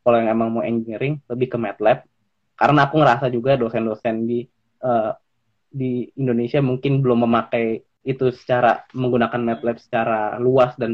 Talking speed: 150 wpm